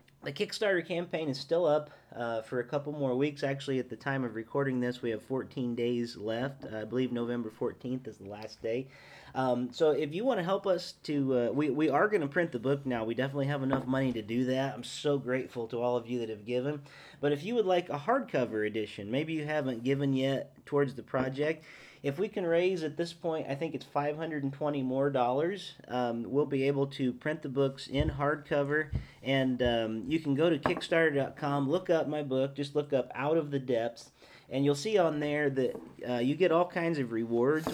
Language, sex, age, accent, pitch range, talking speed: English, male, 40-59, American, 125-150 Hz, 220 wpm